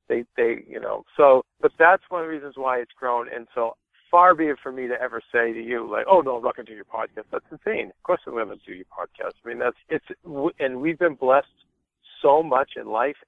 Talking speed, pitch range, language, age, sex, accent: 260 wpm, 125-150 Hz, English, 50-69, male, American